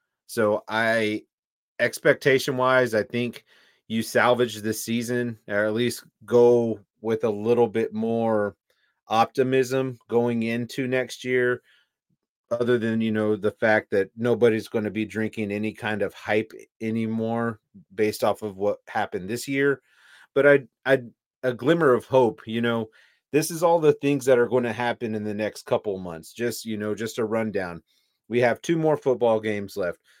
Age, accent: 30-49, American